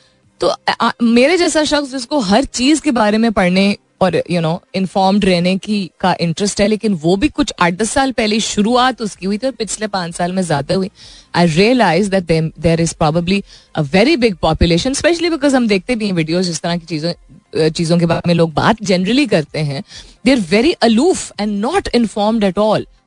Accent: native